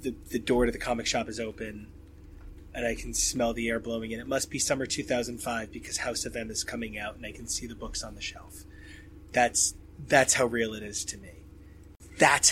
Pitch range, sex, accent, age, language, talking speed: 80-120 Hz, male, American, 30-49, English, 225 wpm